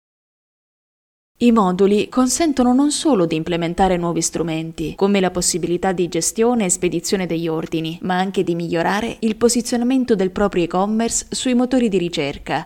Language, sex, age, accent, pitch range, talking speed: Italian, female, 20-39, native, 180-240 Hz, 145 wpm